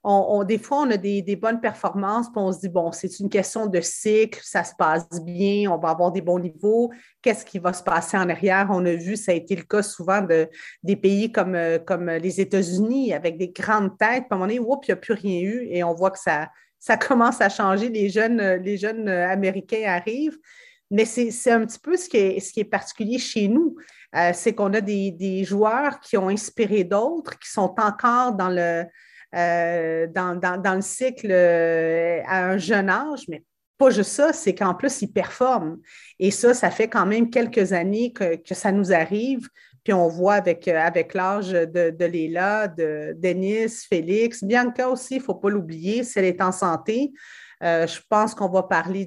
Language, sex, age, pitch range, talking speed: French, female, 30-49, 180-225 Hz, 220 wpm